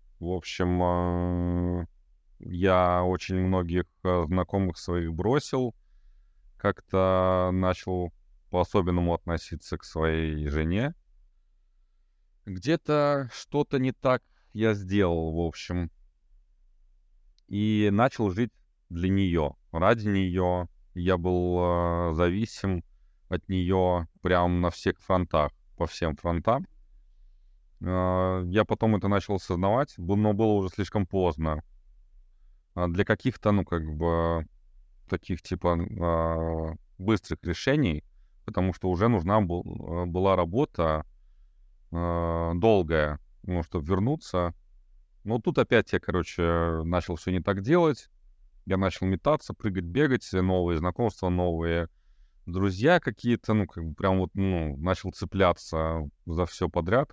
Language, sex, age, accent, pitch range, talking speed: Russian, male, 20-39, native, 85-100 Hz, 115 wpm